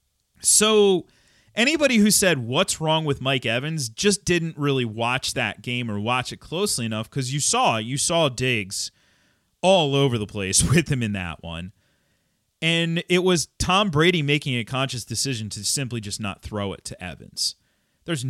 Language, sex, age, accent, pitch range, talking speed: English, male, 30-49, American, 110-155 Hz, 175 wpm